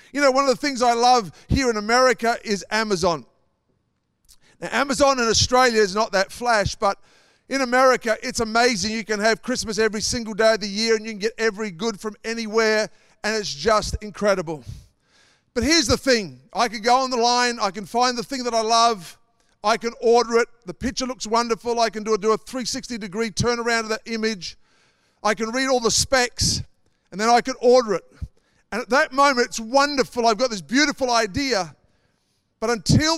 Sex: male